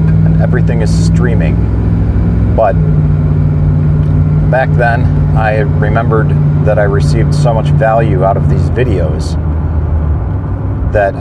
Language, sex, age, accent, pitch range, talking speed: English, male, 40-59, American, 75-95 Hz, 100 wpm